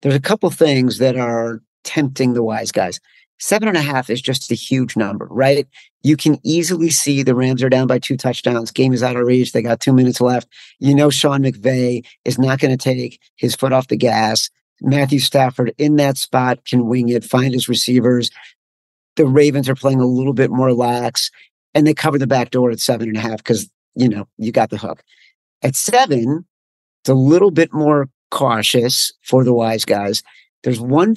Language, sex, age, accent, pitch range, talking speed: English, male, 50-69, American, 125-150 Hz, 205 wpm